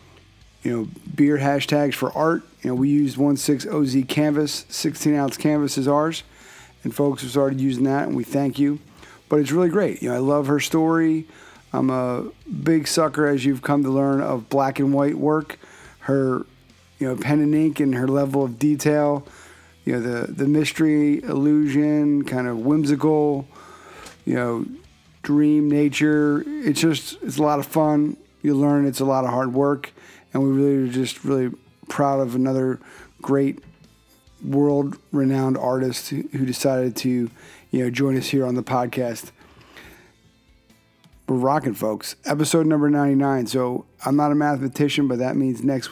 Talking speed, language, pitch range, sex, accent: 165 wpm, English, 130-145 Hz, male, American